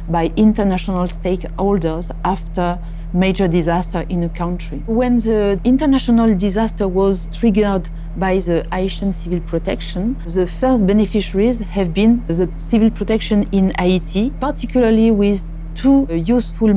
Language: English